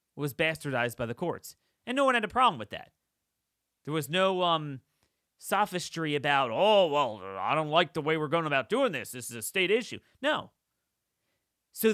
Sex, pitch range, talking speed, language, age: male, 155-220 Hz, 190 wpm, English, 30-49